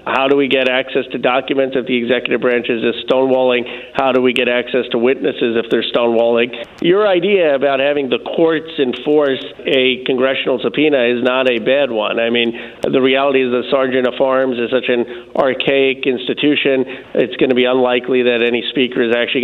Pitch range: 125-135 Hz